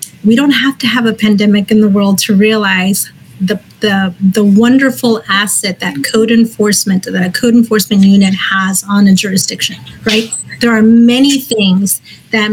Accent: American